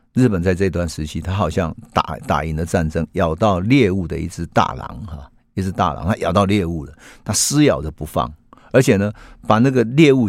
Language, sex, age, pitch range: Chinese, male, 50-69, 80-115 Hz